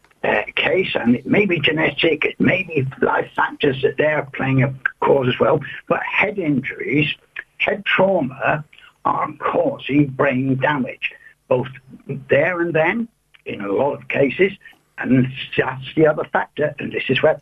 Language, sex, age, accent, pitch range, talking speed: English, male, 60-79, British, 140-195 Hz, 160 wpm